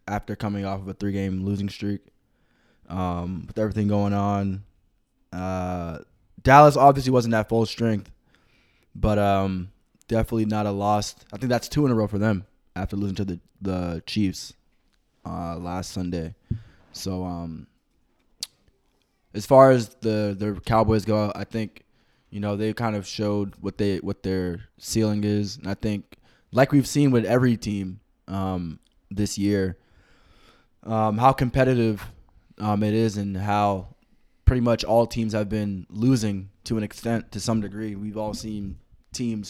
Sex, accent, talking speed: male, American, 160 wpm